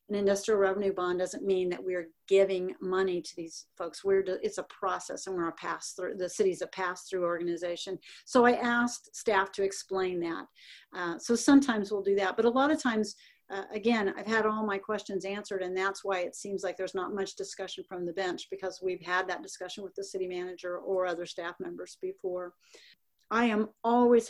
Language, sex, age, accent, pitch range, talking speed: English, female, 50-69, American, 185-215 Hz, 205 wpm